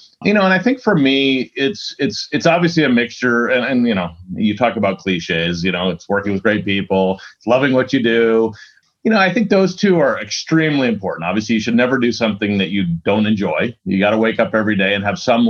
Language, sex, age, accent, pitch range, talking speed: English, male, 30-49, American, 105-140 Hz, 240 wpm